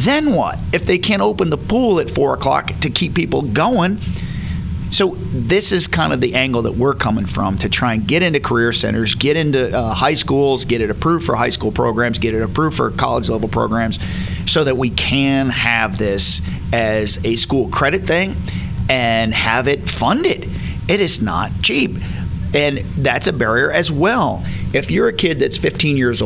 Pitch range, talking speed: 95-135 Hz, 190 wpm